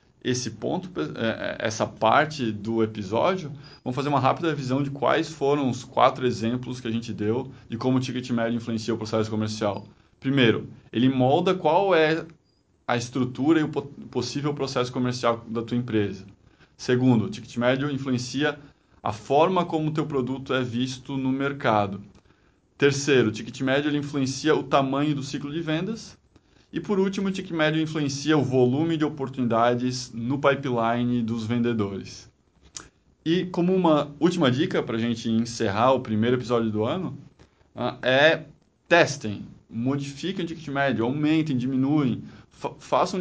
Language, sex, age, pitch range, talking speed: Portuguese, male, 20-39, 115-145 Hz, 155 wpm